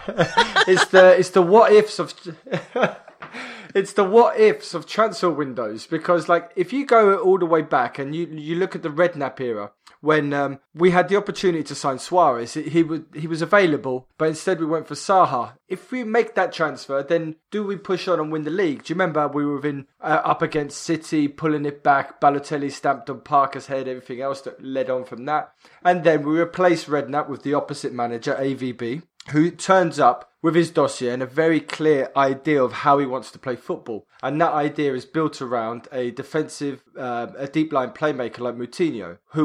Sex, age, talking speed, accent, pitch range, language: male, 20-39, 205 wpm, British, 135-175 Hz, English